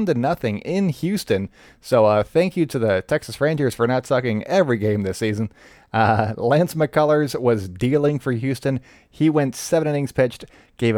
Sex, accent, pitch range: male, American, 110-145 Hz